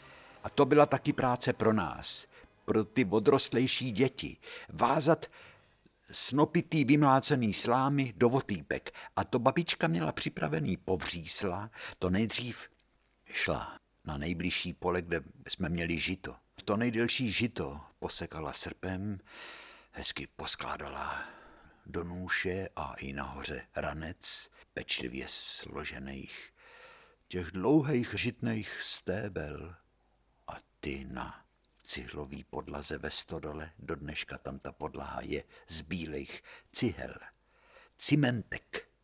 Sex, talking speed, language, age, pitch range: male, 105 wpm, Czech, 60-79, 75-120 Hz